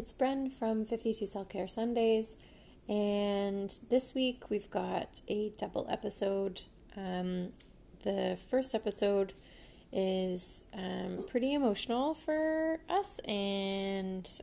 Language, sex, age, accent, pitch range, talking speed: English, female, 20-39, American, 185-220 Hz, 110 wpm